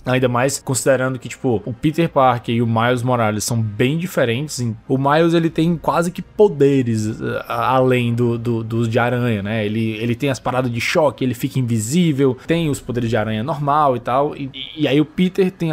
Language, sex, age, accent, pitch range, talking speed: Portuguese, male, 20-39, Brazilian, 125-170 Hz, 200 wpm